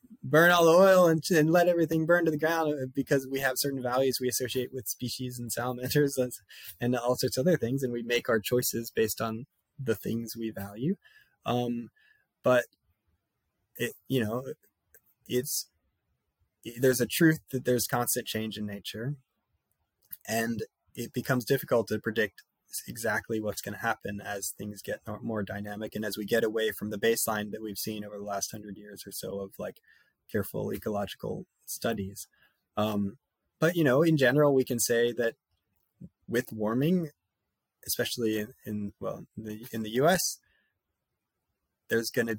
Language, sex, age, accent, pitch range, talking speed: English, male, 20-39, American, 110-130 Hz, 165 wpm